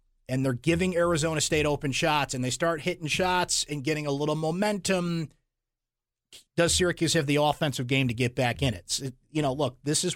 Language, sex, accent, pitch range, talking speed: English, male, American, 130-165 Hz, 200 wpm